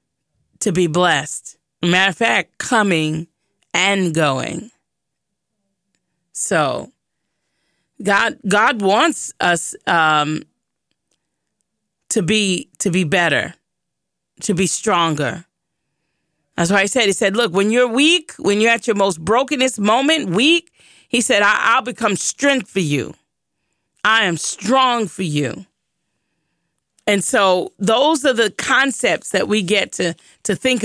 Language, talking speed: English, 125 wpm